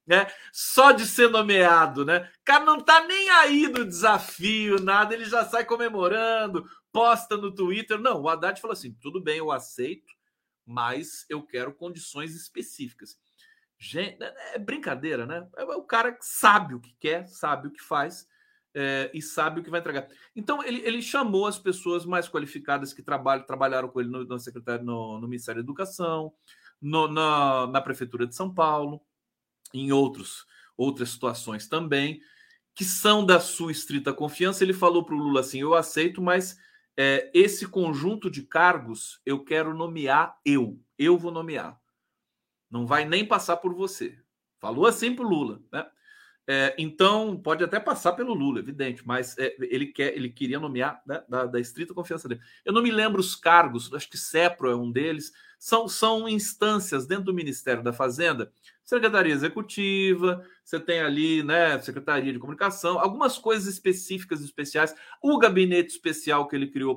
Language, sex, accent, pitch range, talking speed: Portuguese, male, Brazilian, 140-210 Hz, 165 wpm